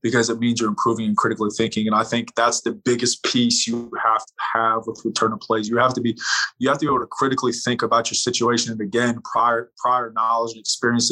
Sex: male